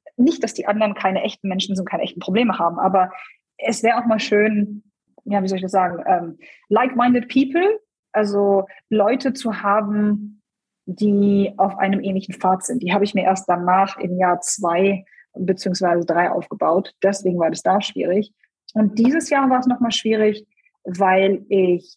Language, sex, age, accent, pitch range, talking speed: German, female, 20-39, German, 190-245 Hz, 170 wpm